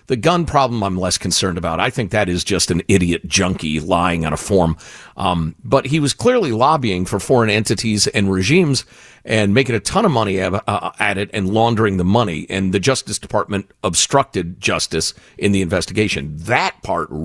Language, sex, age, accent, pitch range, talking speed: English, male, 50-69, American, 95-125 Hz, 185 wpm